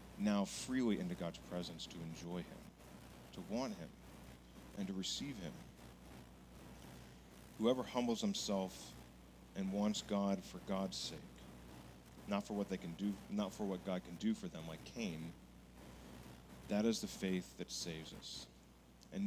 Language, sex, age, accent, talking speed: English, male, 40-59, American, 150 wpm